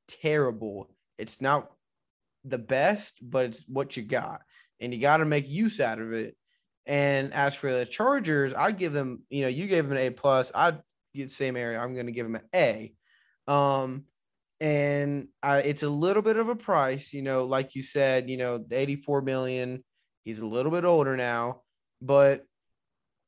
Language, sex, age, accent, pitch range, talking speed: English, male, 20-39, American, 130-155 Hz, 190 wpm